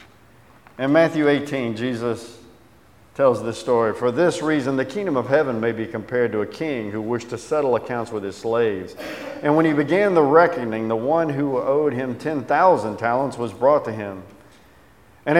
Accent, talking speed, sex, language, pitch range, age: American, 180 wpm, male, English, 110-145 Hz, 50-69